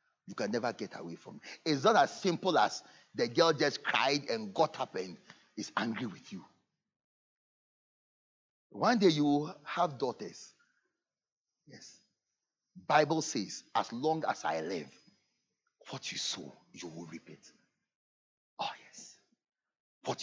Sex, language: male, English